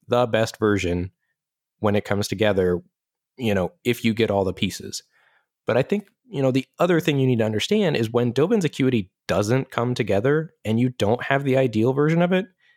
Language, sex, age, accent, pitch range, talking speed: English, male, 20-39, American, 95-125 Hz, 200 wpm